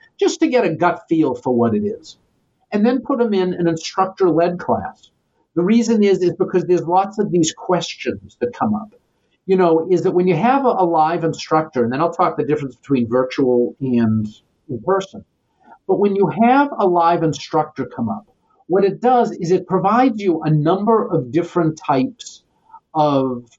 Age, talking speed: 50-69, 190 wpm